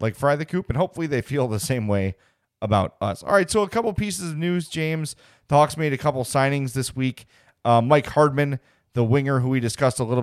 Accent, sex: American, male